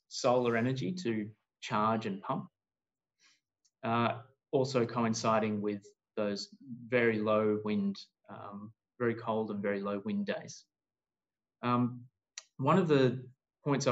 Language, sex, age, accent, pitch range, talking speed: English, male, 20-39, Australian, 110-125 Hz, 115 wpm